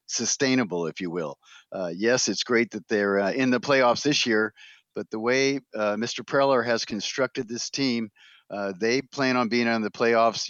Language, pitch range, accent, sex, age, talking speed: English, 110-125 Hz, American, male, 50-69, 195 wpm